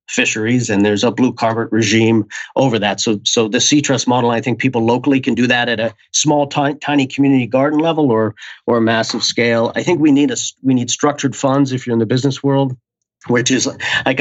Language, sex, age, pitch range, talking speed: English, male, 40-59, 110-135 Hz, 225 wpm